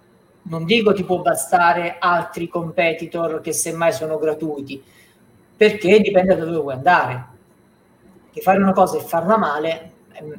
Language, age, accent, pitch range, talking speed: Italian, 40-59, native, 135-200 Hz, 145 wpm